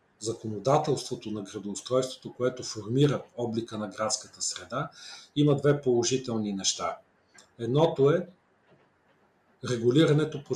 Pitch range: 110-140 Hz